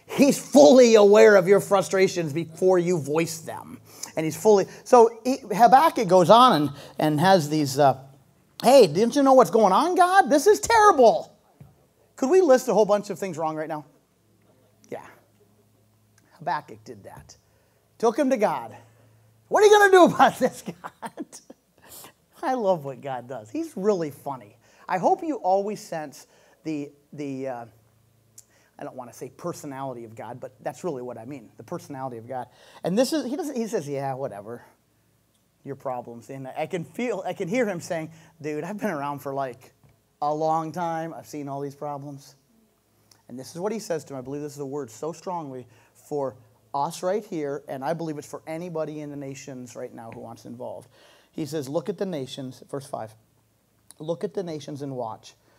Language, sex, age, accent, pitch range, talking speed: English, male, 30-49, American, 130-195 Hz, 190 wpm